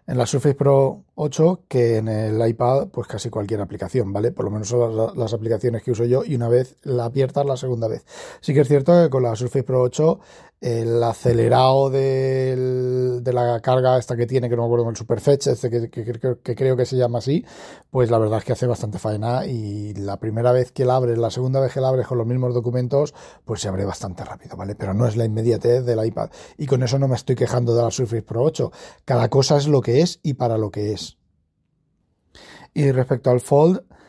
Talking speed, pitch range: 240 wpm, 120-130 Hz